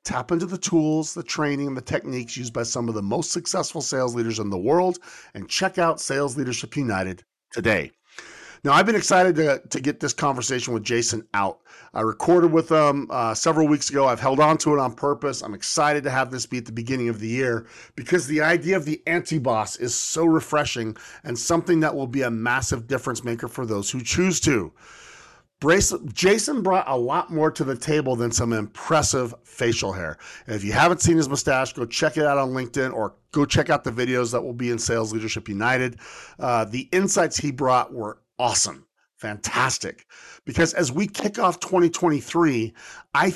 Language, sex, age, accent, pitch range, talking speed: English, male, 40-59, American, 125-175 Hz, 200 wpm